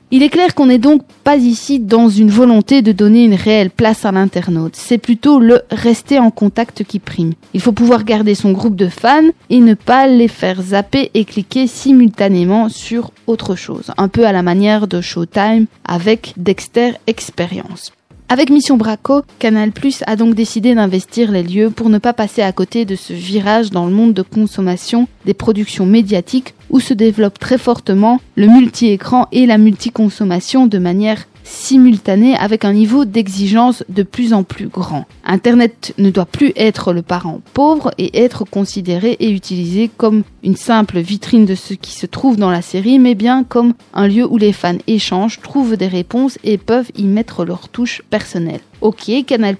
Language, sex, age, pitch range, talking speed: French, female, 20-39, 195-240 Hz, 185 wpm